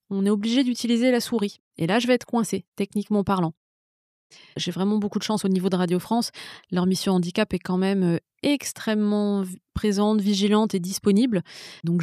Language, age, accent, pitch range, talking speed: French, 20-39, French, 180-220 Hz, 180 wpm